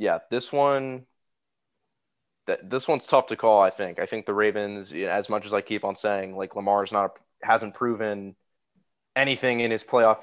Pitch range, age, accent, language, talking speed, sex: 100-110 Hz, 20-39, American, English, 180 wpm, male